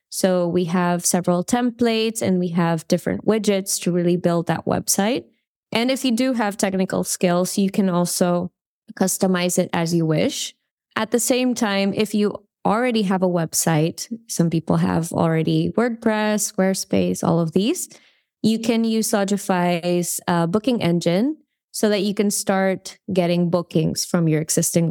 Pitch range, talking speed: 175-215 Hz, 155 wpm